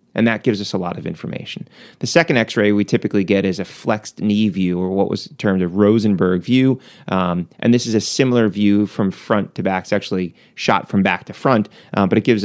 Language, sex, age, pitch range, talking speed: English, male, 30-49, 95-110 Hz, 230 wpm